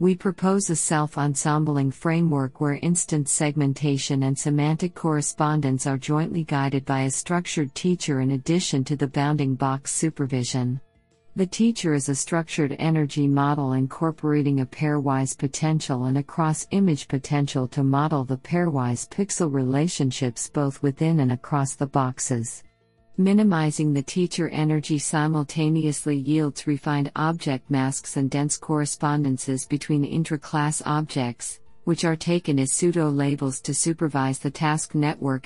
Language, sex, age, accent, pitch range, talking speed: English, female, 50-69, American, 140-160 Hz, 130 wpm